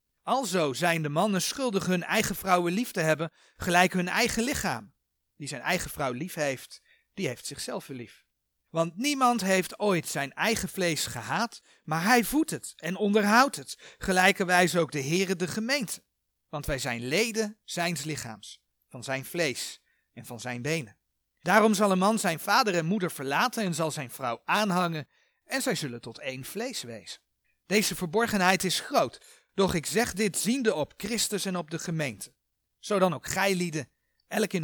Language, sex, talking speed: Dutch, male, 175 wpm